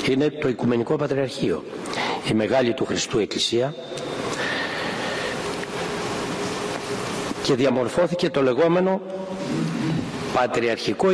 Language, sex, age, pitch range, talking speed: Greek, male, 60-79, 125-180 Hz, 75 wpm